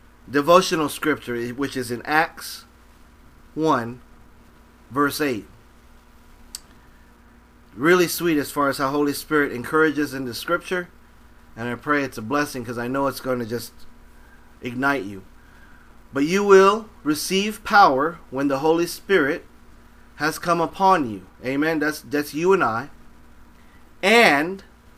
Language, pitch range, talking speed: English, 120-165 Hz, 135 wpm